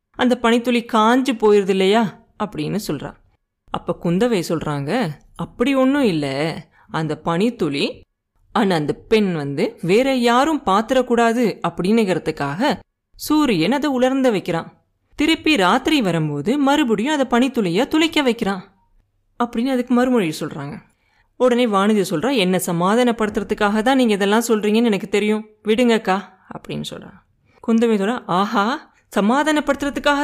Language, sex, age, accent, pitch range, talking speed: Tamil, female, 30-49, native, 190-260 Hz, 110 wpm